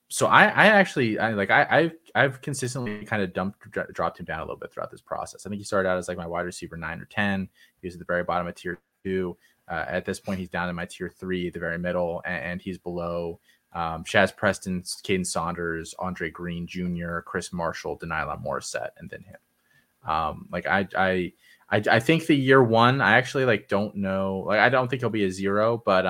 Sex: male